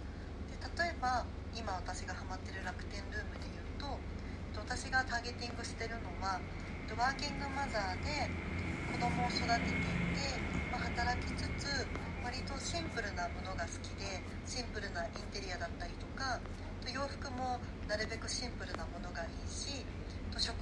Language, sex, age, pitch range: Japanese, female, 40-59, 85-95 Hz